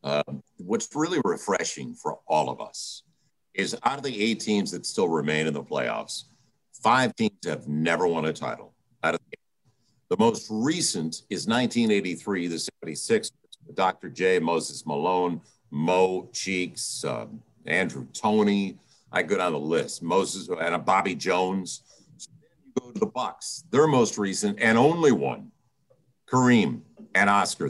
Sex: male